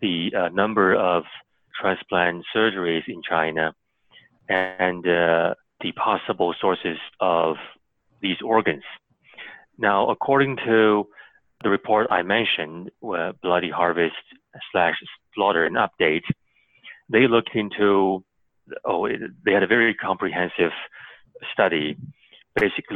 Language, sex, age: English, male, 30-49